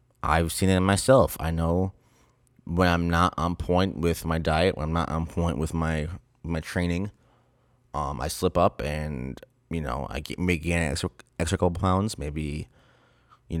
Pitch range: 80-90 Hz